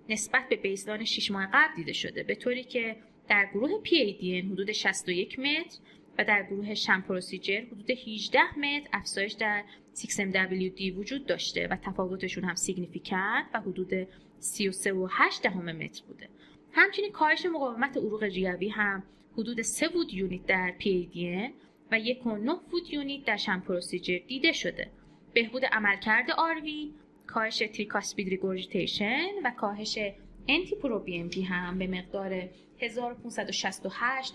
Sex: female